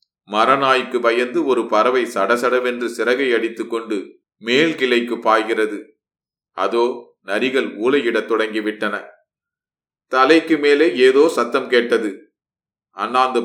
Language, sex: Tamil, male